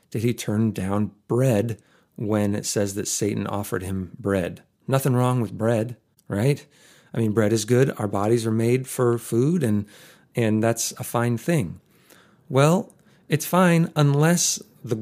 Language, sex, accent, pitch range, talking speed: English, male, American, 110-140 Hz, 160 wpm